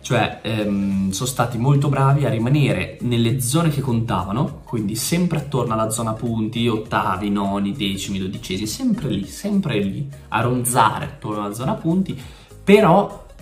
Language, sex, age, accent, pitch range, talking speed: Italian, male, 20-39, native, 110-155 Hz, 150 wpm